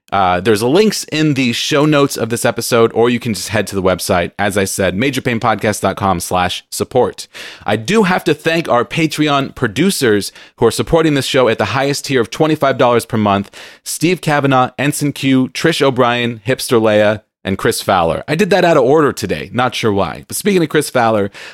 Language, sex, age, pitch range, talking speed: English, male, 30-49, 105-150 Hz, 200 wpm